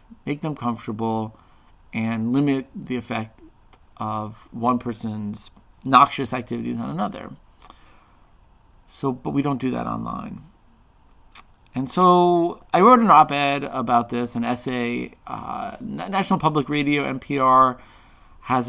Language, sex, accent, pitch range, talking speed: English, male, American, 115-175 Hz, 120 wpm